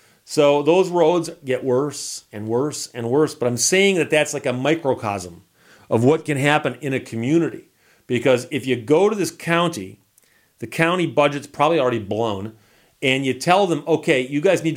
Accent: American